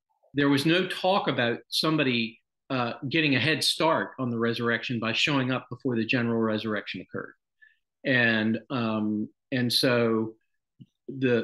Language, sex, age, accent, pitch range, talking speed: English, male, 50-69, American, 120-150 Hz, 140 wpm